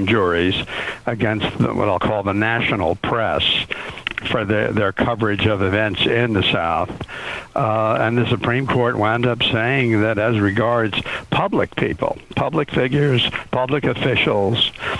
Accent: American